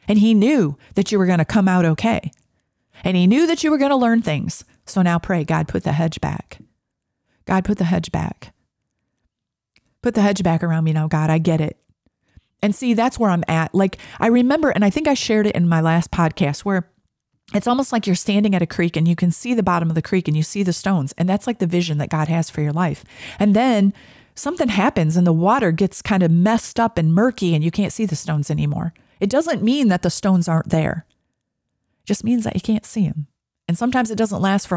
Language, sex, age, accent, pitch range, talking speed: English, female, 40-59, American, 165-225 Hz, 245 wpm